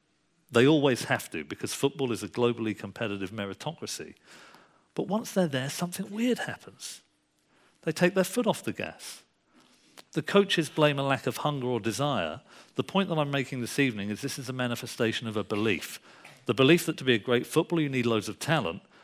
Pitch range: 120-175 Hz